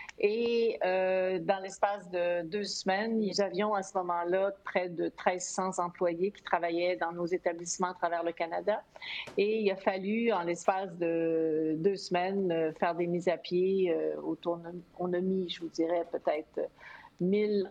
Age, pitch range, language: 50-69, 170-205 Hz, French